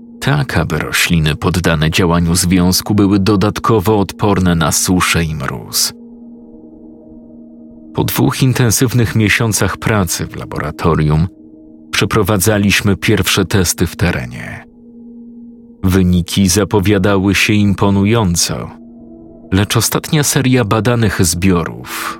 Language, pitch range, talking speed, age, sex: Polish, 85-115 Hz, 90 wpm, 40-59, male